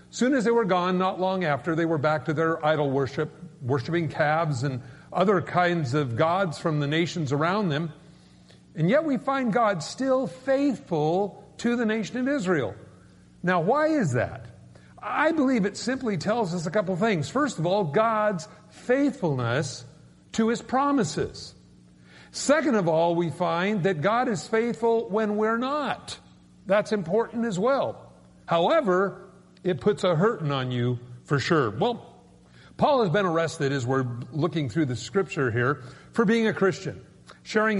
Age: 50-69